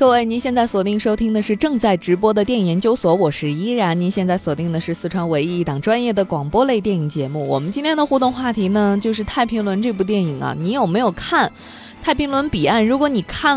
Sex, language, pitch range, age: female, Chinese, 175-245 Hz, 20-39